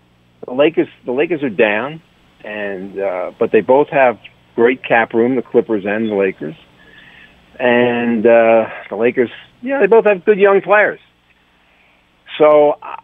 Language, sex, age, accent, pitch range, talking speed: English, male, 50-69, American, 100-130 Hz, 145 wpm